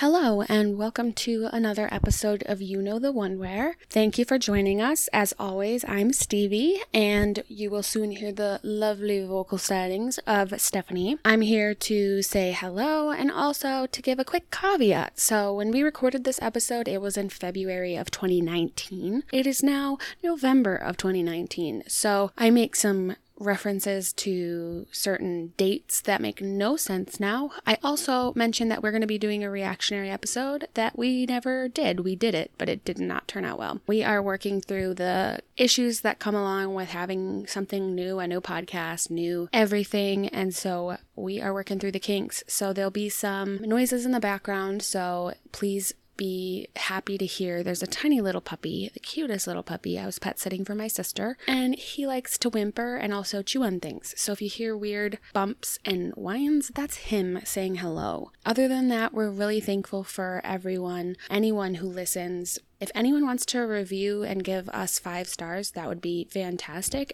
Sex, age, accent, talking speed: female, 20-39, American, 180 wpm